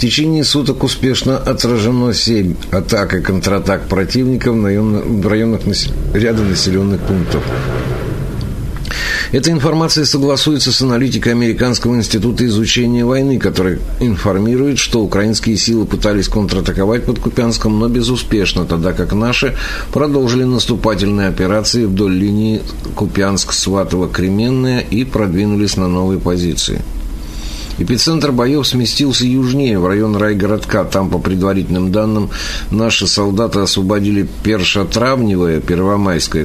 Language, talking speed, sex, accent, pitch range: Russian, 110 wpm, male, native, 95-120 Hz